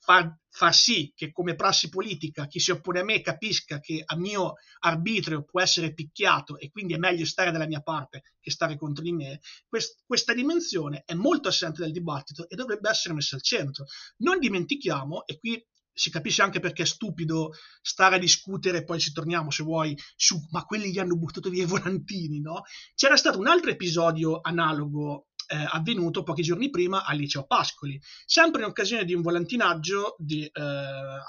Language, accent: Italian, native